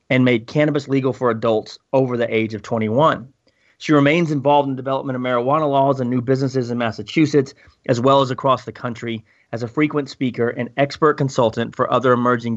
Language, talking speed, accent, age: English, 190 wpm, American, 30-49